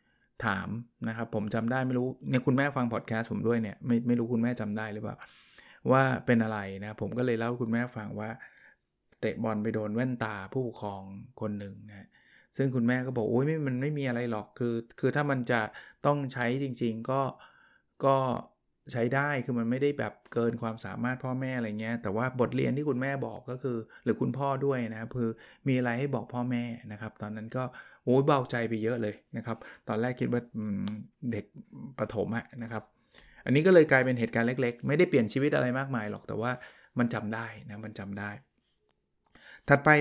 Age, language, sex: 20-39, Thai, male